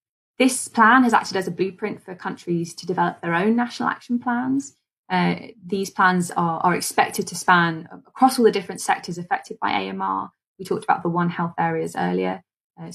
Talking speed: 190 wpm